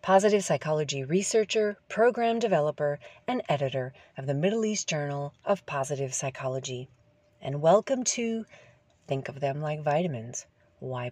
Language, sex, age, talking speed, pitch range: English, female, 40-59, 130 wpm, 140-200 Hz